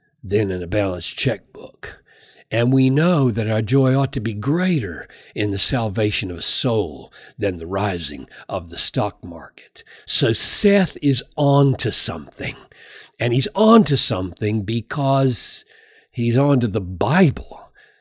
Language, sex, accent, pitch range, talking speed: English, male, American, 125-185 Hz, 150 wpm